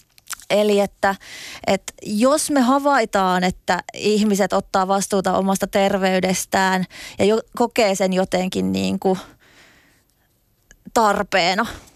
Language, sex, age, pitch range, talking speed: Finnish, female, 20-39, 190-230 Hz, 85 wpm